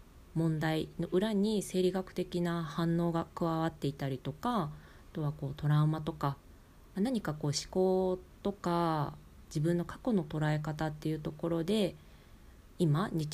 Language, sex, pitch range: Japanese, female, 140-190 Hz